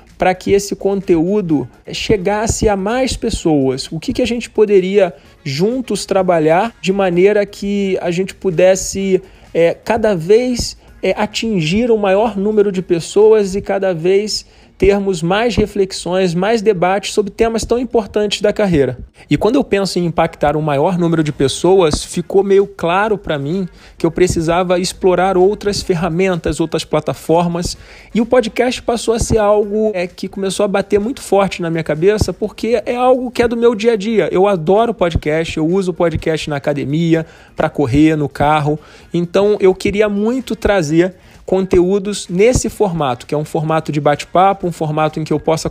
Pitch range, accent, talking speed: 165-210 Hz, Brazilian, 170 wpm